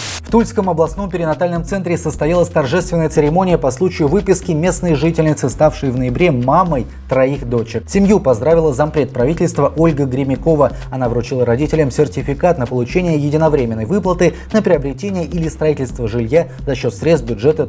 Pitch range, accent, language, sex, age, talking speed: 120-165 Hz, native, Russian, male, 20-39, 145 wpm